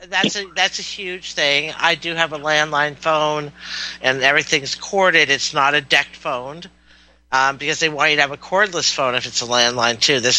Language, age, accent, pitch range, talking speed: English, 50-69, American, 130-165 Hz, 210 wpm